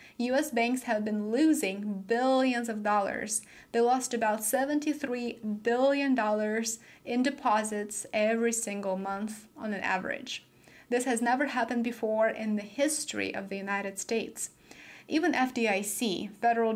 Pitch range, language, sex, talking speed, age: 205-250 Hz, English, female, 135 wpm, 30-49